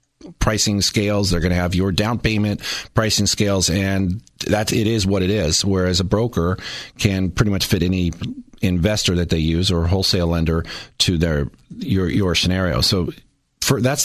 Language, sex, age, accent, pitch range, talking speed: English, male, 40-59, American, 85-110 Hz, 180 wpm